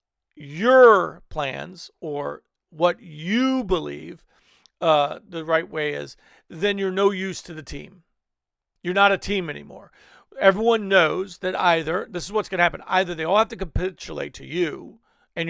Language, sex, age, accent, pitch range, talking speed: English, male, 50-69, American, 155-200 Hz, 165 wpm